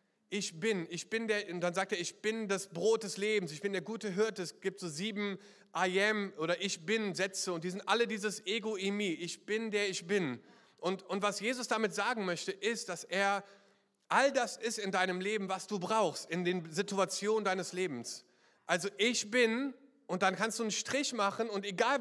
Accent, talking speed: German, 210 wpm